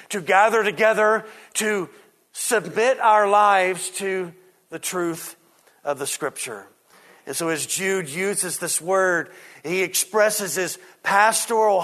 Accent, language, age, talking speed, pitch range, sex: American, English, 40-59, 120 wpm, 140-195 Hz, male